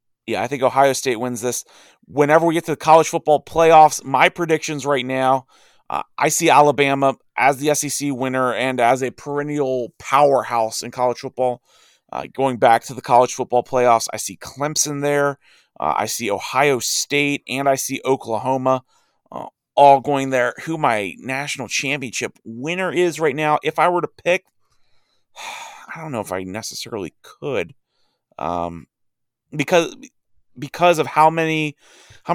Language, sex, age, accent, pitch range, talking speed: English, male, 30-49, American, 120-145 Hz, 160 wpm